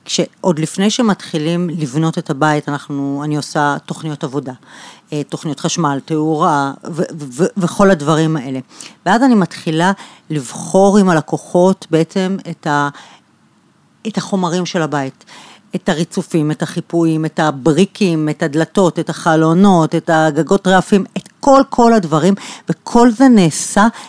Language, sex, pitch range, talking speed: Hebrew, female, 160-195 Hz, 130 wpm